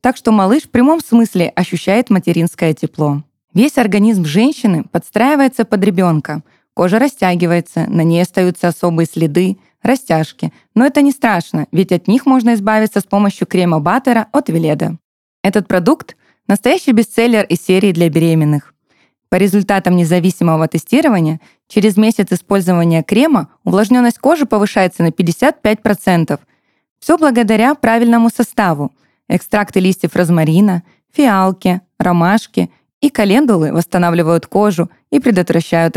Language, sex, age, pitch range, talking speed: Russian, female, 20-39, 175-230 Hz, 125 wpm